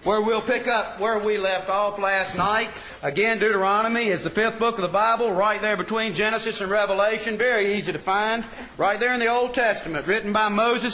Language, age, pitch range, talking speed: English, 40-59, 205-245 Hz, 210 wpm